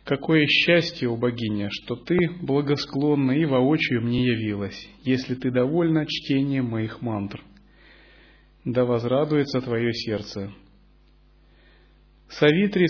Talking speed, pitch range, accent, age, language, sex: 100 wpm, 115-155 Hz, native, 30-49, Russian, male